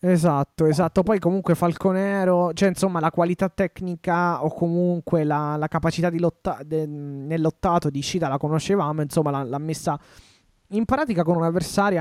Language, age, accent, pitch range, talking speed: Italian, 20-39, native, 140-175 Hz, 160 wpm